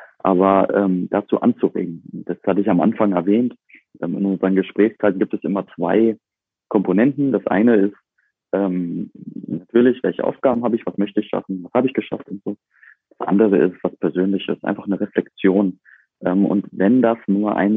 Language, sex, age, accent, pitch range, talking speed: German, male, 30-49, German, 90-105 Hz, 175 wpm